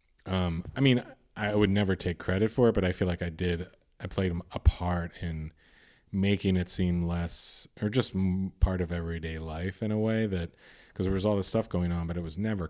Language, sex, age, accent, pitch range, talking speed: English, male, 40-59, American, 80-95 Hz, 220 wpm